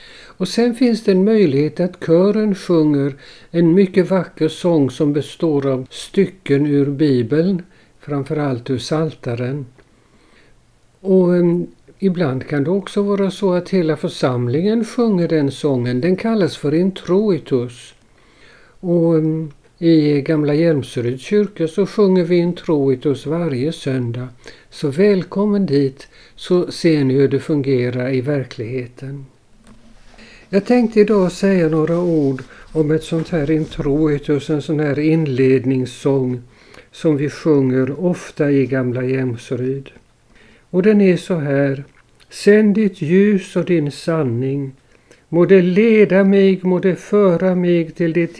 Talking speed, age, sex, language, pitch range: 130 wpm, 60-79, male, Swedish, 135-180 Hz